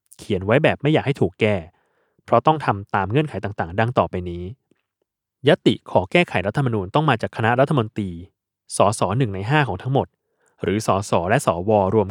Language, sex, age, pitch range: Thai, male, 20-39, 100-140 Hz